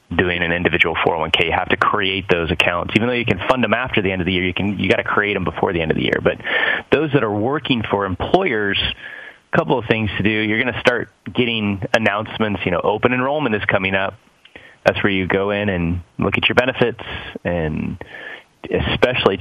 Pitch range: 95-115 Hz